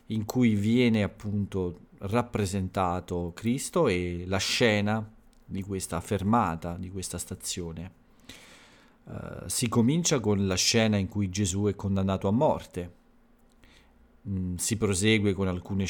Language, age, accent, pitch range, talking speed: Italian, 40-59, native, 90-110 Hz, 125 wpm